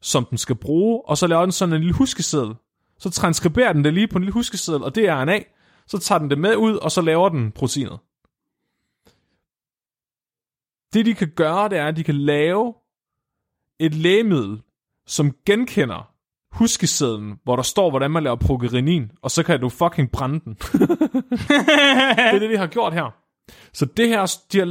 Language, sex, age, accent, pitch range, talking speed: Danish, male, 30-49, native, 125-190 Hz, 185 wpm